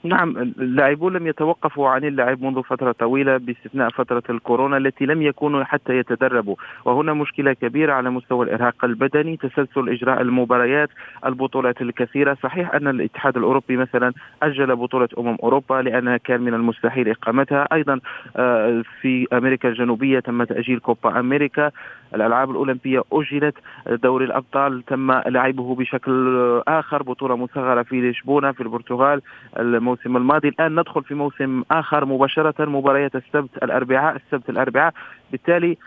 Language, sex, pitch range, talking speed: Arabic, male, 125-145 Hz, 135 wpm